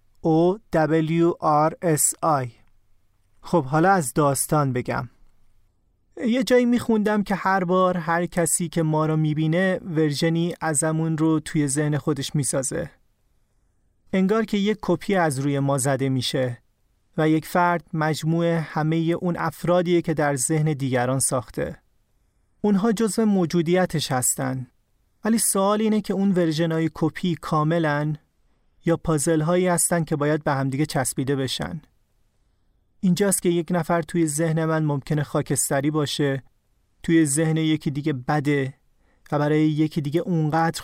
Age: 30-49